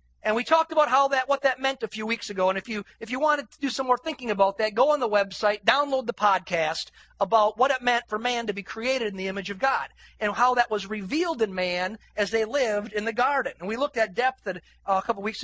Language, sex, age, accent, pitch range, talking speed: English, male, 40-59, American, 195-250 Hz, 275 wpm